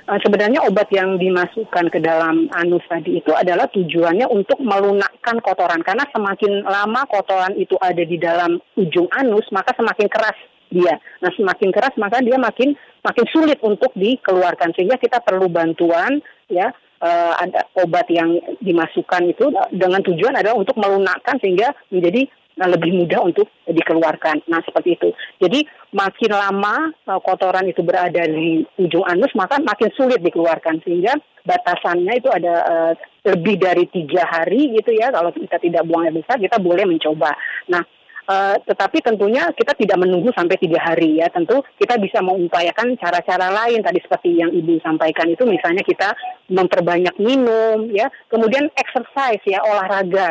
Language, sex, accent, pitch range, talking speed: Indonesian, female, native, 175-225 Hz, 150 wpm